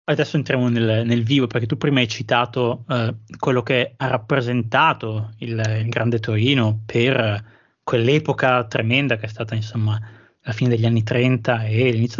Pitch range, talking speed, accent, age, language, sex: 120-145 Hz, 160 wpm, native, 20-39, Italian, male